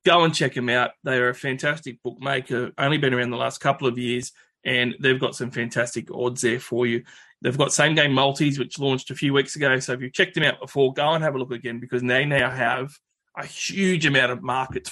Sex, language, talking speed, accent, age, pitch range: male, English, 235 wpm, Australian, 20-39, 120-135 Hz